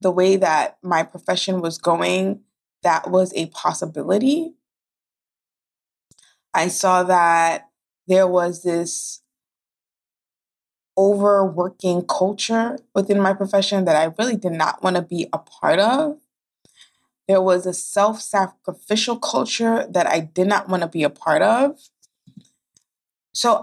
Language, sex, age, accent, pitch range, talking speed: English, female, 20-39, American, 180-215 Hz, 125 wpm